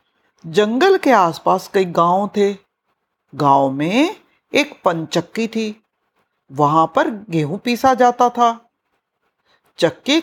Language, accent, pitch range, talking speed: Hindi, native, 175-275 Hz, 105 wpm